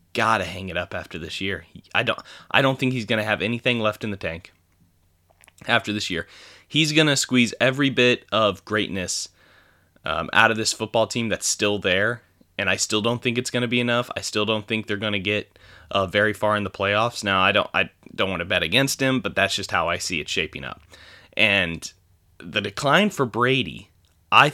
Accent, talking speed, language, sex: American, 215 wpm, English, male